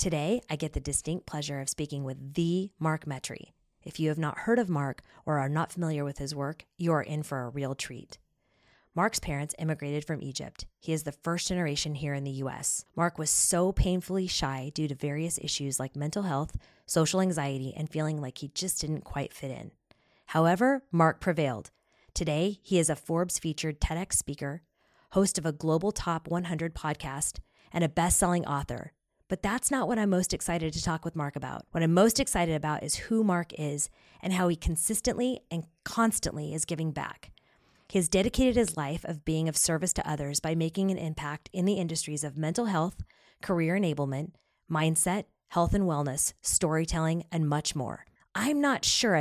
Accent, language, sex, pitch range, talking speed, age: American, English, female, 150-180 Hz, 190 wpm, 20-39